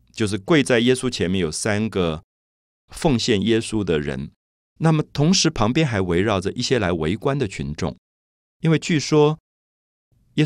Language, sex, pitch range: Chinese, male, 85-135 Hz